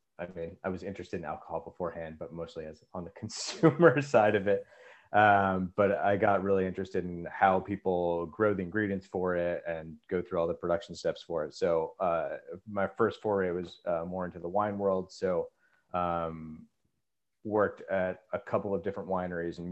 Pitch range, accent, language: 85-100 Hz, American, English